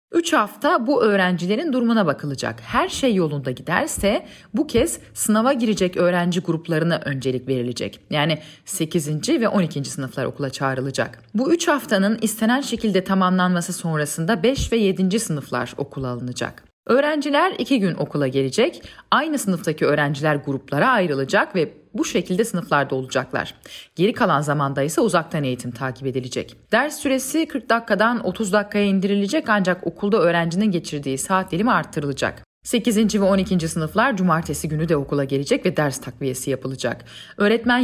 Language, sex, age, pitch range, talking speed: Turkish, female, 40-59, 145-215 Hz, 140 wpm